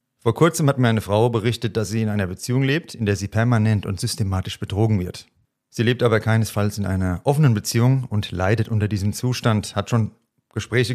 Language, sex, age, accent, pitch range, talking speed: German, male, 40-59, German, 100-120 Hz, 205 wpm